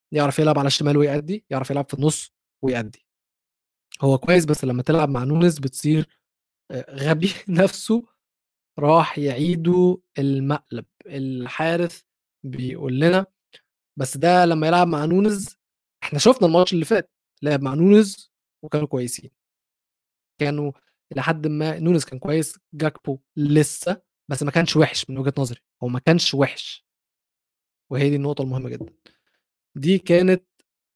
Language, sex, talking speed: Arabic, male, 130 wpm